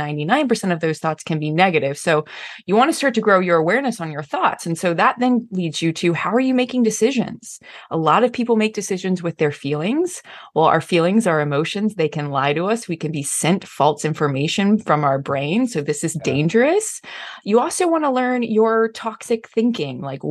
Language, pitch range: English, 165-230 Hz